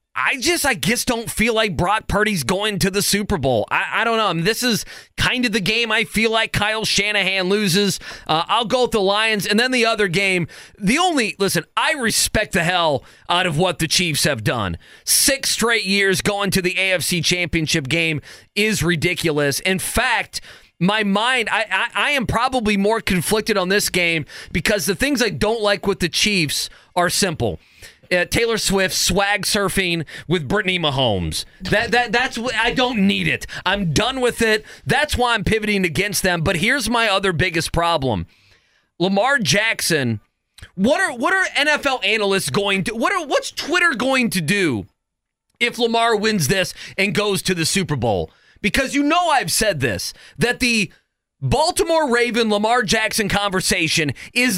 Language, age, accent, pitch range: English, 30-49, American, 175-230 Hz